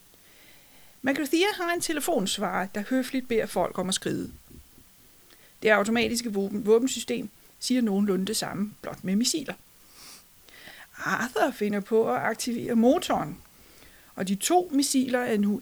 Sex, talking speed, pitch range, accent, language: female, 130 wpm, 205-260 Hz, native, Danish